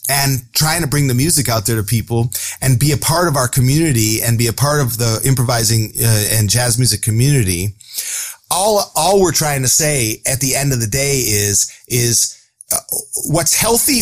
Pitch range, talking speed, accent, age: 120-150 Hz, 195 wpm, American, 30-49